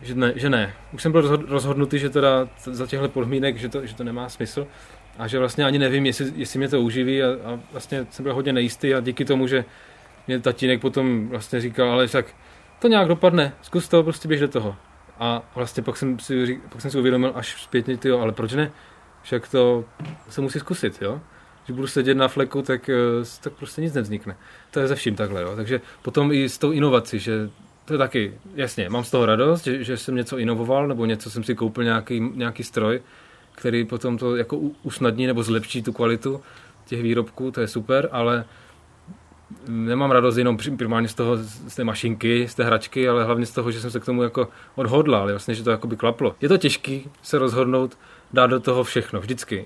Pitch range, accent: 120-135 Hz, native